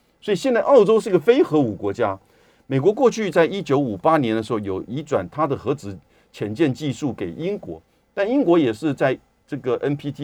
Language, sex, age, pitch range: Chinese, male, 50-69, 120-180 Hz